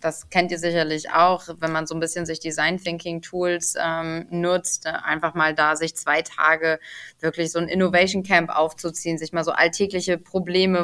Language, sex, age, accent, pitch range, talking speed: German, female, 20-39, German, 170-200 Hz, 185 wpm